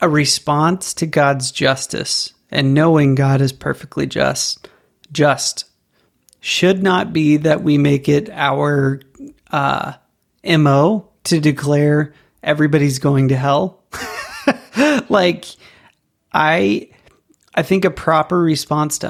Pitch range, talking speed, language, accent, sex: 140-160 Hz, 115 wpm, English, American, male